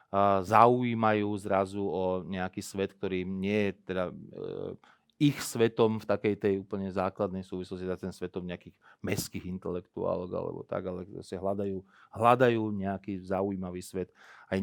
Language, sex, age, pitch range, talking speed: Slovak, male, 30-49, 95-115 Hz, 125 wpm